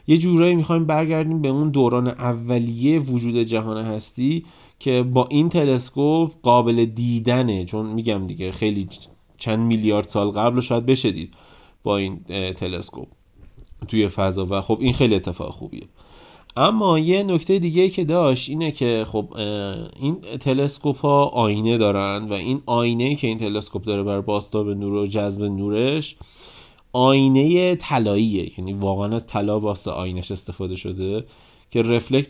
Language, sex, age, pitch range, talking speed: Persian, male, 30-49, 105-135 Hz, 145 wpm